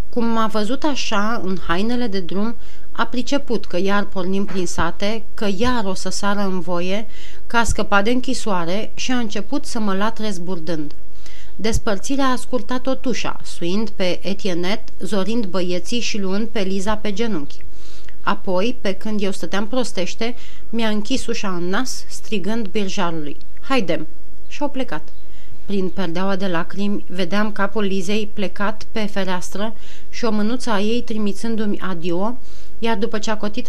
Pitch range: 185-230 Hz